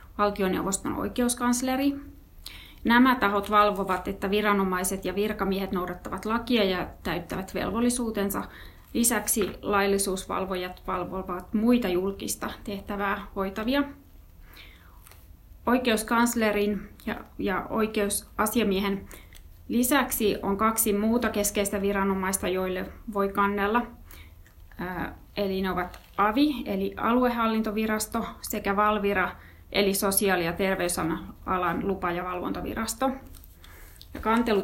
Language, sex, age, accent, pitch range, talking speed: Finnish, female, 30-49, native, 185-230 Hz, 85 wpm